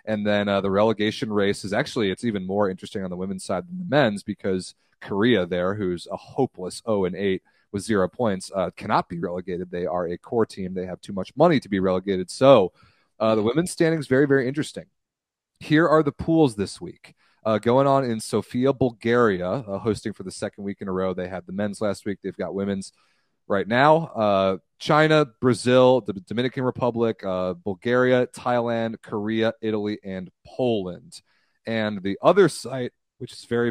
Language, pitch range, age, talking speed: English, 95-120 Hz, 30-49, 190 wpm